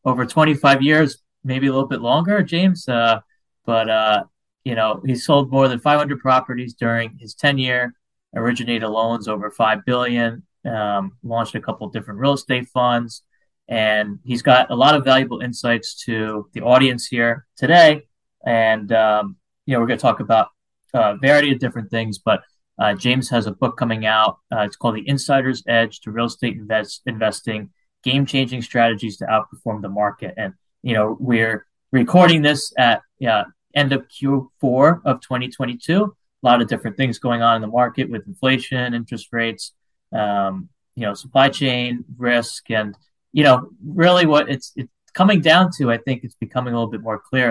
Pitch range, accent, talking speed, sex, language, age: 115-135 Hz, American, 180 wpm, male, English, 20-39